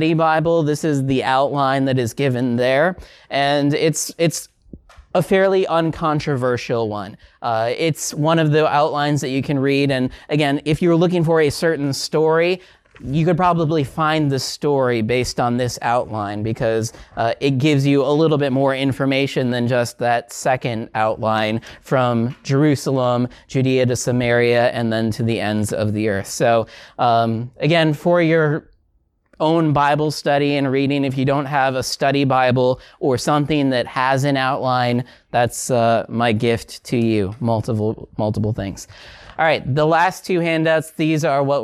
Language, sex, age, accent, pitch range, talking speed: English, male, 30-49, American, 120-155 Hz, 165 wpm